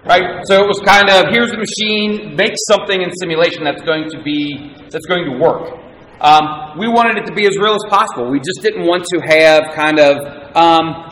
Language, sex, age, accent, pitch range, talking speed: English, male, 30-49, American, 145-190 Hz, 215 wpm